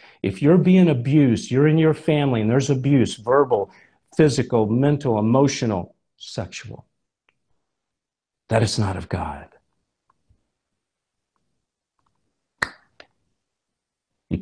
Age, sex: 50-69, male